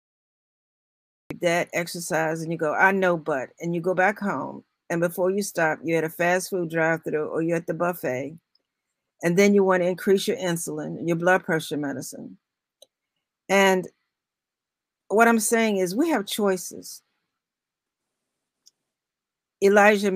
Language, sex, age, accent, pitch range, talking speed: English, female, 50-69, American, 170-215 Hz, 150 wpm